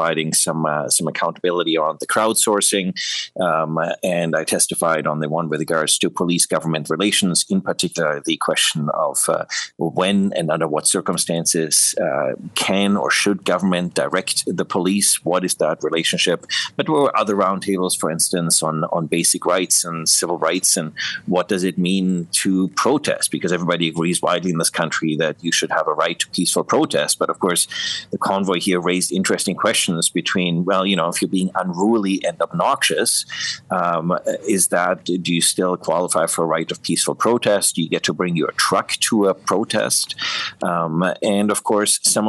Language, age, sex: English, 30-49, male